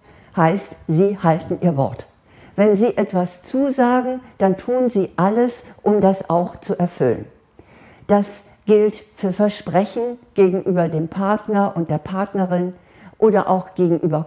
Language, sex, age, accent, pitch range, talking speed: German, female, 50-69, German, 165-210 Hz, 130 wpm